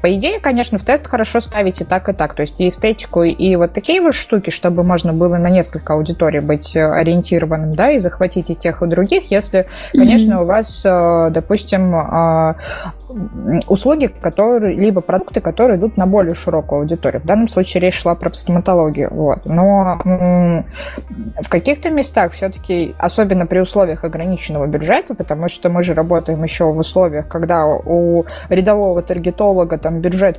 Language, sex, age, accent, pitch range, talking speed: Russian, female, 20-39, native, 170-210 Hz, 160 wpm